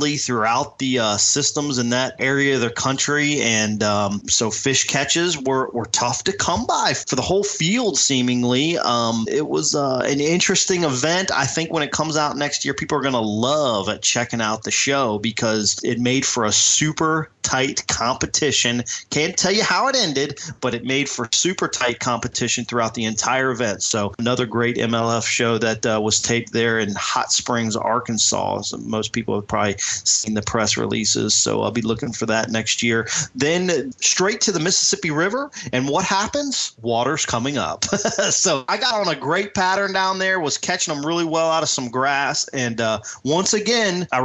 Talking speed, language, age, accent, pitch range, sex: 190 wpm, English, 30-49, American, 115-150 Hz, male